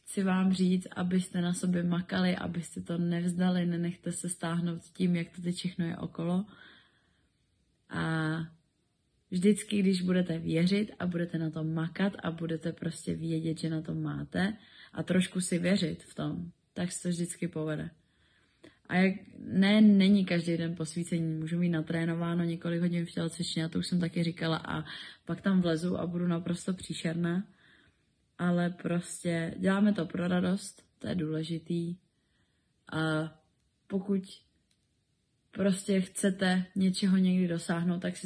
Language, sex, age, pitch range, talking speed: Czech, female, 20-39, 165-185 Hz, 150 wpm